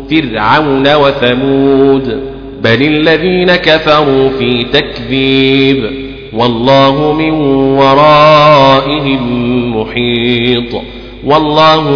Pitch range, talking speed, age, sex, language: 130-150 Hz, 60 wpm, 40-59, male, Arabic